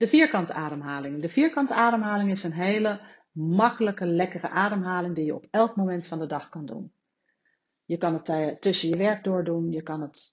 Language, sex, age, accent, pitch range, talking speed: Dutch, female, 40-59, Dutch, 155-200 Hz, 185 wpm